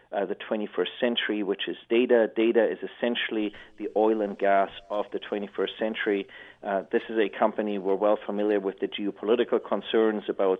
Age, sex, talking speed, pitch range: 40-59, male, 175 wpm, 105-120 Hz